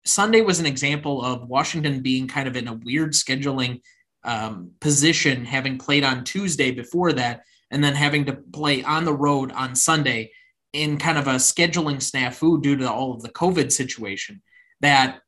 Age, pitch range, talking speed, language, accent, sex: 20-39, 135-165 Hz, 175 wpm, English, American, male